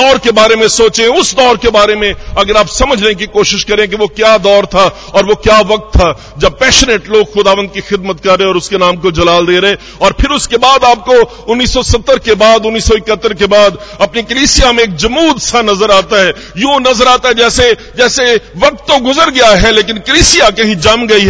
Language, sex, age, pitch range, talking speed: Hindi, male, 50-69, 185-240 Hz, 215 wpm